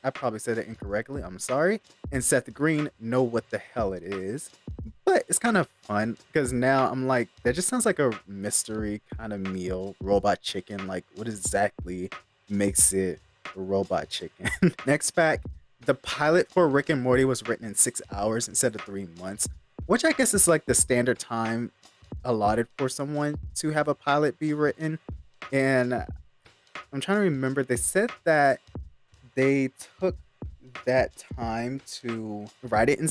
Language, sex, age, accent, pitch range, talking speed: English, male, 20-39, American, 105-150 Hz, 170 wpm